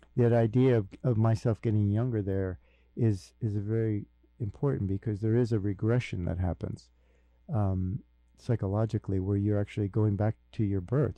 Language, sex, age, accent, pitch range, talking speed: English, male, 50-69, American, 95-115 Hz, 155 wpm